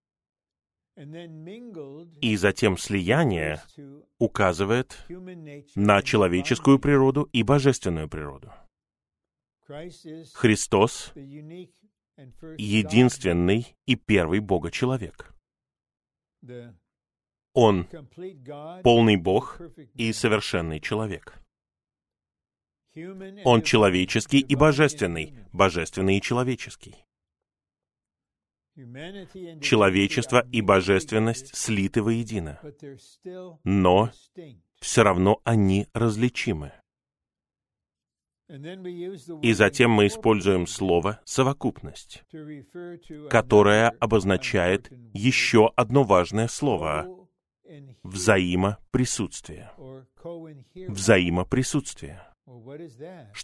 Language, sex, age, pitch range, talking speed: Russian, male, 30-49, 100-145 Hz, 60 wpm